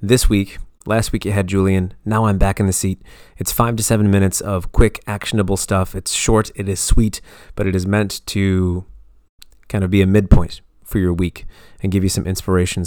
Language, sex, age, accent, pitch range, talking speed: English, male, 30-49, American, 90-110 Hz, 210 wpm